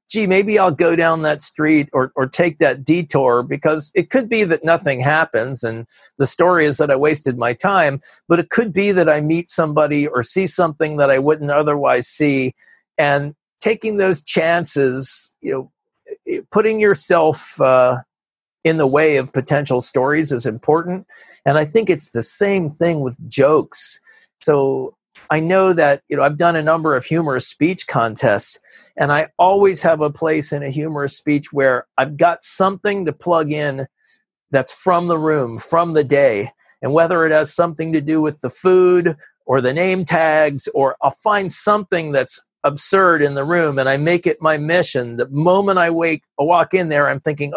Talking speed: 185 wpm